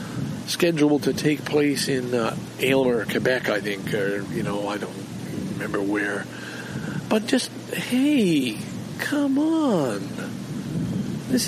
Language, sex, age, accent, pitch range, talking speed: English, male, 50-69, American, 140-200 Hz, 120 wpm